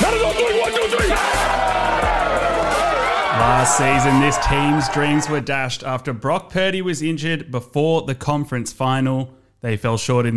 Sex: male